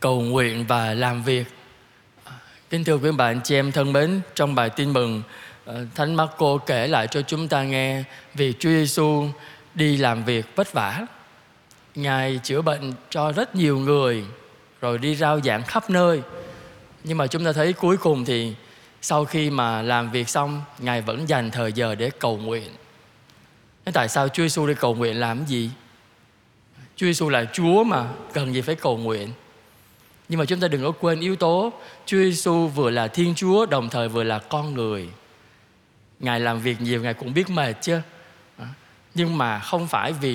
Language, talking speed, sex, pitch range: Vietnamese, 185 wpm, male, 120-160 Hz